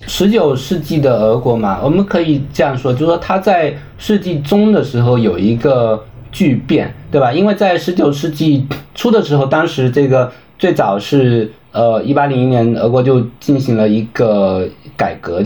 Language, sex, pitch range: Chinese, male, 115-150 Hz